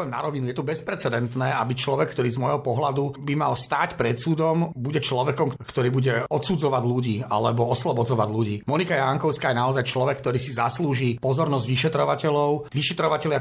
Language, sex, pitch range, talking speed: Slovak, male, 125-150 Hz, 160 wpm